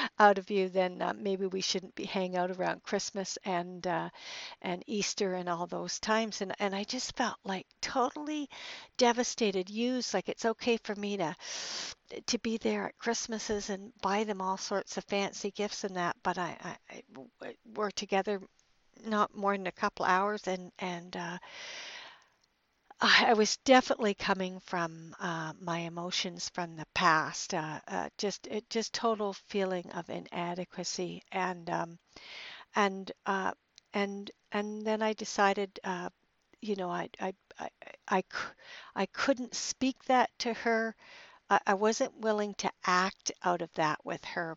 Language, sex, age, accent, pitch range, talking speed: English, female, 60-79, American, 185-220 Hz, 160 wpm